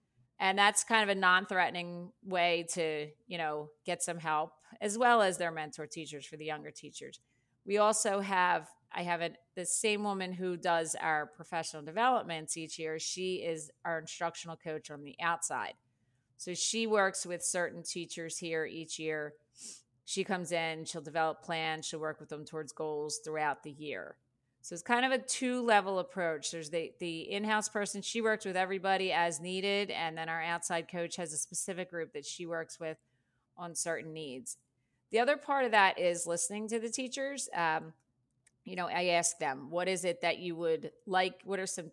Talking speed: 185 wpm